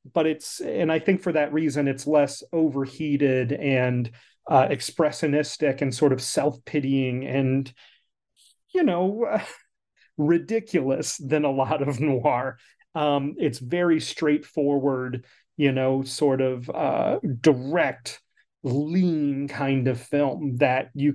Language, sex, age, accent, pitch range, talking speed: English, male, 30-49, American, 130-155 Hz, 120 wpm